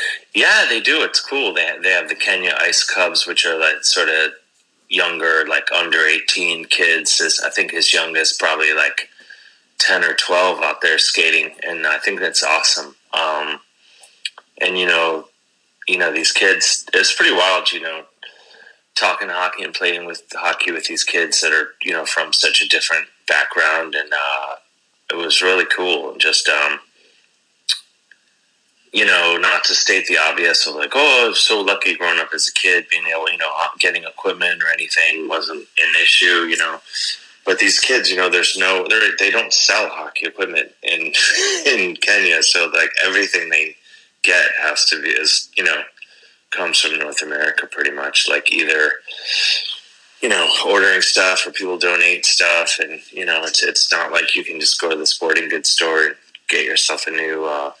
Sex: male